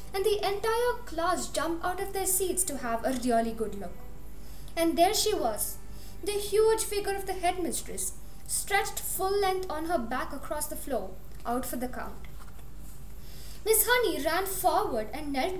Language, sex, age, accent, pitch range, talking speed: English, female, 20-39, Indian, 265-405 Hz, 170 wpm